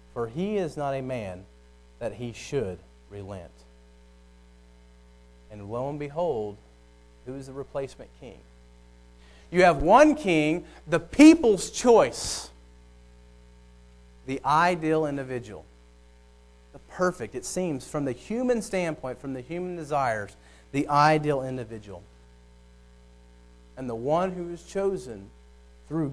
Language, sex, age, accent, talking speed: English, male, 40-59, American, 115 wpm